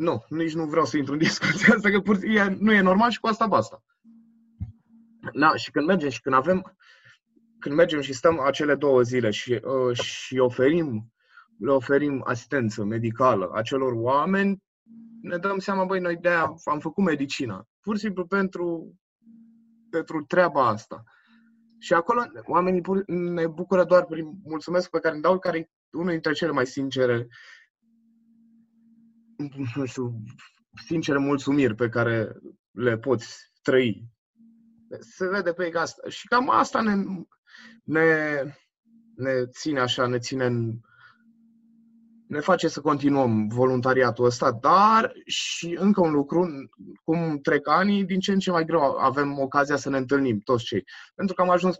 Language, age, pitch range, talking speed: Romanian, 20-39, 135-200 Hz, 155 wpm